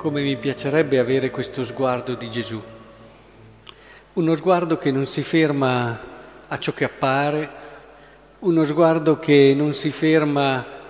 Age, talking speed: 50-69, 130 wpm